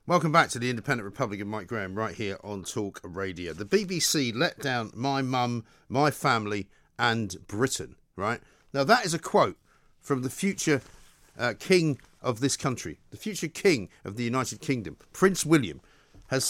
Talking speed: 170 wpm